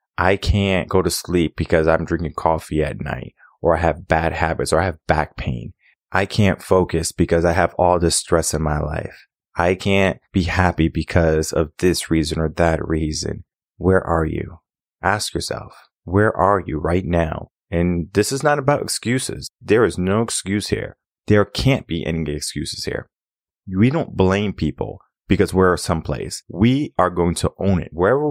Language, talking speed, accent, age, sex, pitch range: English, 180 wpm, American, 30-49, male, 85-100 Hz